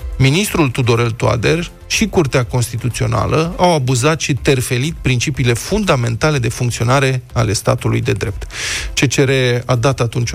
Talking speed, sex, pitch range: 130 wpm, male, 120-145 Hz